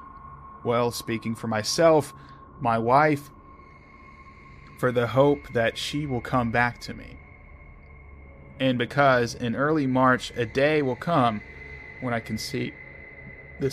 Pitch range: 110-135 Hz